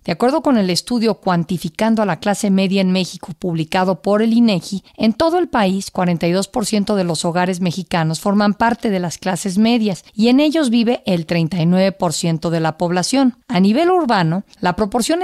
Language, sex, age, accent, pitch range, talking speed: Spanish, female, 50-69, Mexican, 175-230 Hz, 175 wpm